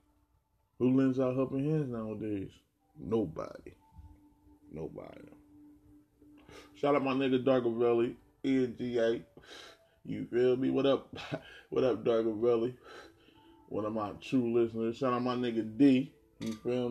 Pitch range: 115-135 Hz